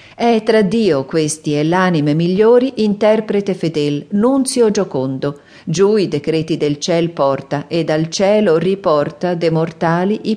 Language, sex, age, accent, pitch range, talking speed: Italian, female, 50-69, native, 150-195 Hz, 140 wpm